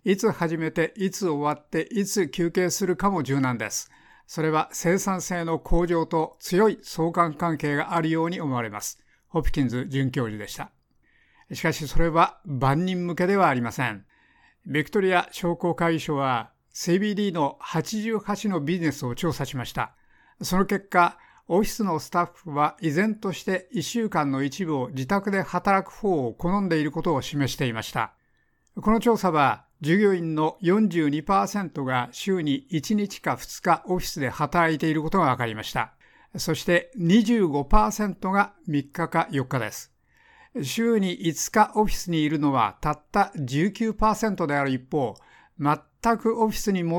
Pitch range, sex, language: 150-195 Hz, male, Japanese